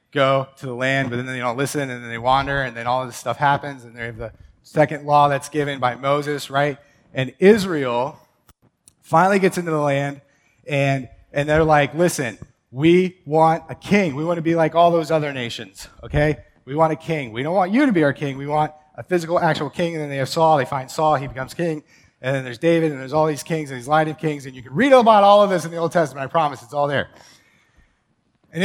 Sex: male